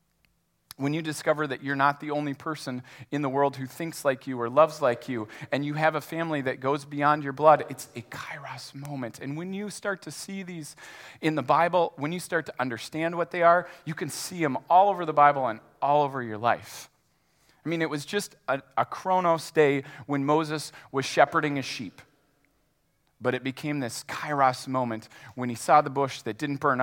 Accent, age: American, 40-59